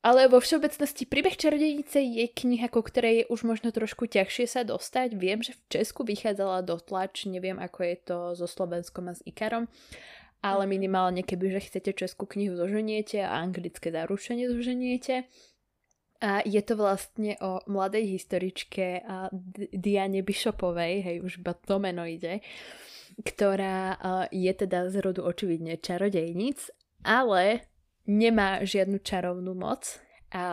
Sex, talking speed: female, 145 wpm